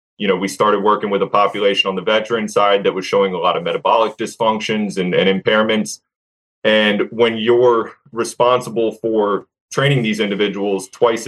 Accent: American